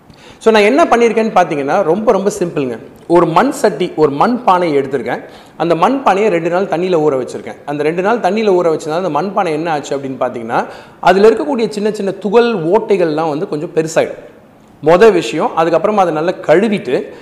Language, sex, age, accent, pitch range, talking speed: Tamil, male, 40-59, native, 155-210 Hz, 165 wpm